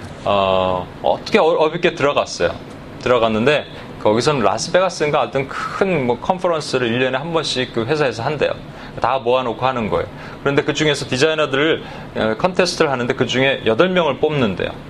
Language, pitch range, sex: Korean, 125-165 Hz, male